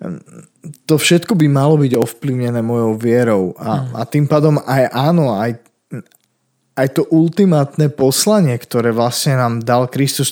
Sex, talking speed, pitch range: male, 140 wpm, 120-145 Hz